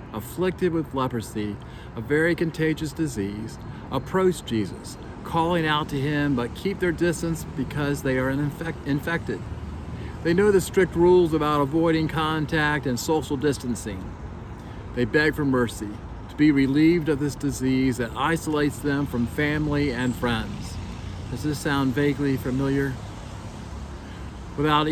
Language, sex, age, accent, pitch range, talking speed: English, male, 40-59, American, 110-150 Hz, 130 wpm